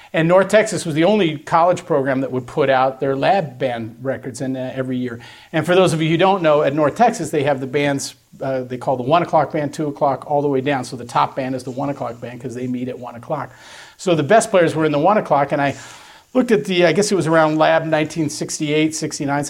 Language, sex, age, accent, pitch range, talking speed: English, male, 40-59, American, 135-170 Hz, 260 wpm